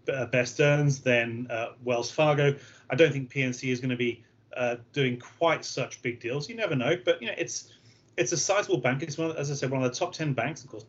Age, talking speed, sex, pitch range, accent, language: 30-49, 240 wpm, male, 120-140 Hz, British, English